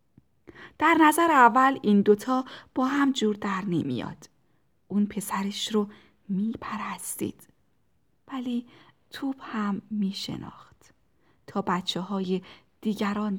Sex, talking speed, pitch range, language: female, 95 wpm, 190-240 Hz, Persian